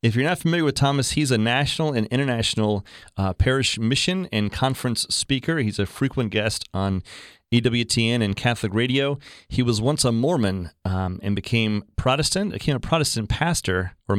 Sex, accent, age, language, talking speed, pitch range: male, American, 30-49, English, 170 wpm, 105-130 Hz